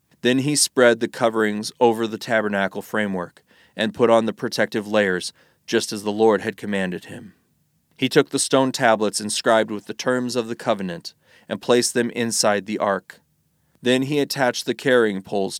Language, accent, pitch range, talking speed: English, American, 100-125 Hz, 175 wpm